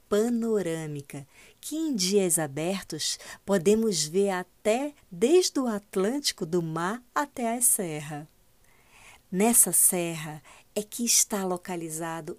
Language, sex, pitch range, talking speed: Portuguese, female, 160-205 Hz, 105 wpm